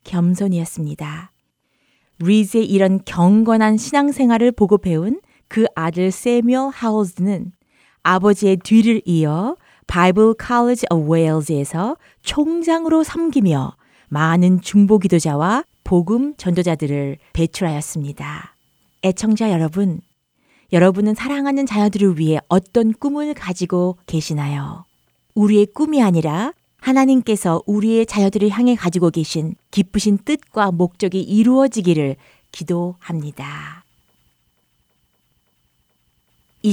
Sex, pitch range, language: female, 170-235 Hz, Korean